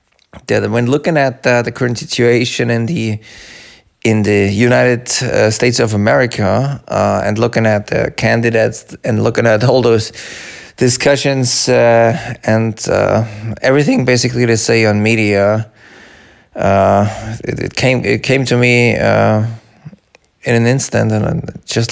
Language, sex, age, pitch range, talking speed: English, male, 20-39, 110-125 Hz, 140 wpm